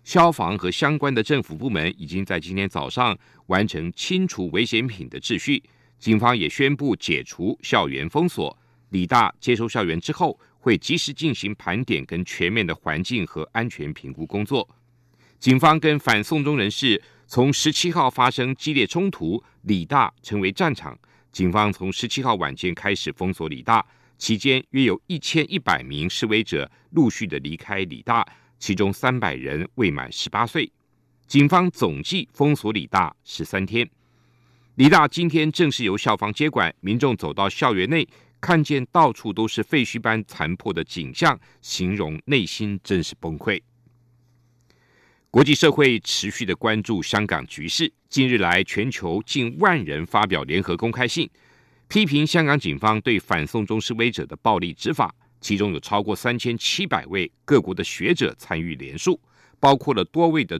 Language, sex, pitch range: Chinese, male, 100-140 Hz